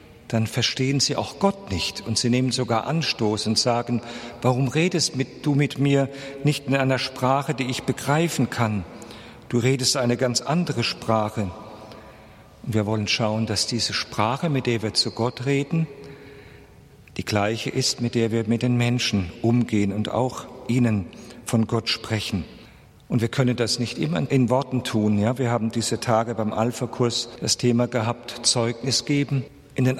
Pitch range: 110-135 Hz